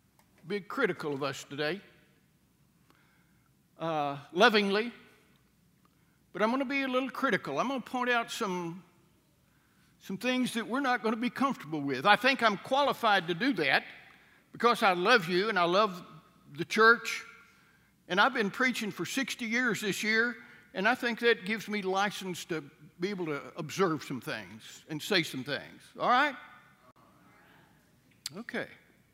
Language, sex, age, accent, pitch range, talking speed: English, male, 60-79, American, 180-250 Hz, 160 wpm